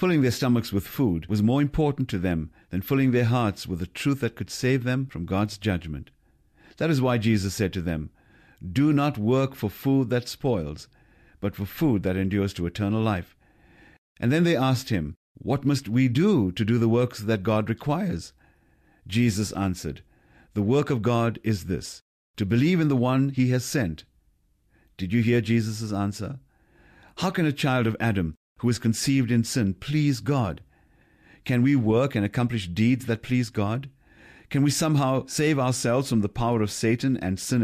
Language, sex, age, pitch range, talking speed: English, male, 50-69, 100-135 Hz, 185 wpm